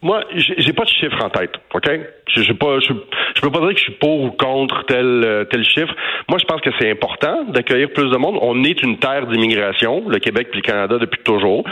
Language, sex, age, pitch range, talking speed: French, male, 40-59, 105-135 Hz, 235 wpm